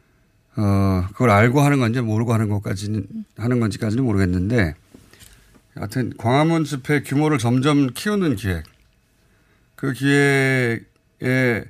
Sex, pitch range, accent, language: male, 100-135 Hz, native, Korean